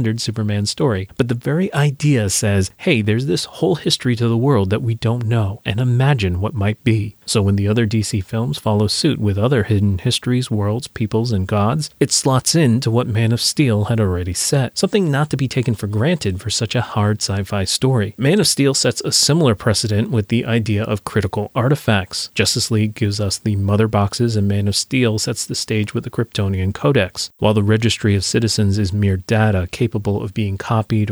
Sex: male